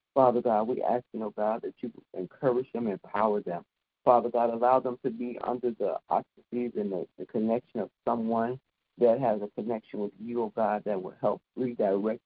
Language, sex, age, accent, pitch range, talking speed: English, male, 50-69, American, 105-125 Hz, 210 wpm